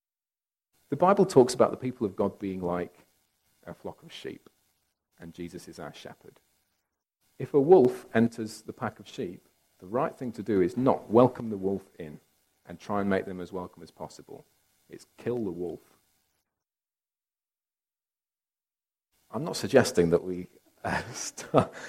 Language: English